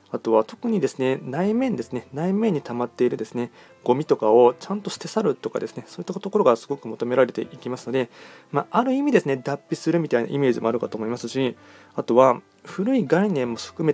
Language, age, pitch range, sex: Japanese, 20-39, 120-165 Hz, male